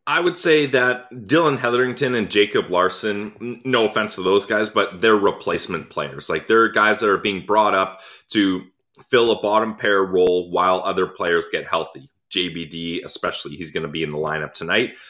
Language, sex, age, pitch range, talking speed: English, male, 30-49, 90-120 Hz, 185 wpm